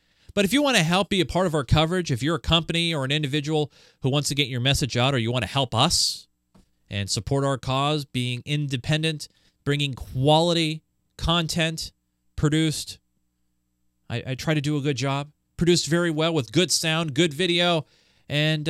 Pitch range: 120-170 Hz